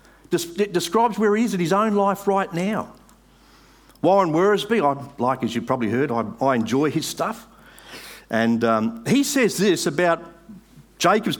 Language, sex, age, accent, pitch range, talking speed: English, male, 50-69, Australian, 160-225 Hz, 165 wpm